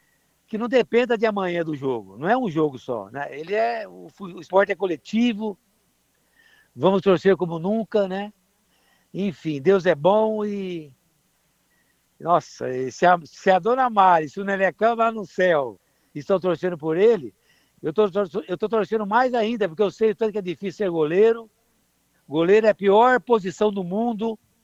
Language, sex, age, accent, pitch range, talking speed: Portuguese, male, 60-79, Brazilian, 165-215 Hz, 170 wpm